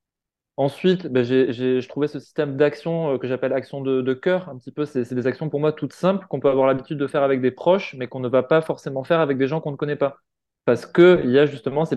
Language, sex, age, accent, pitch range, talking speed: French, male, 20-39, French, 135-160 Hz, 260 wpm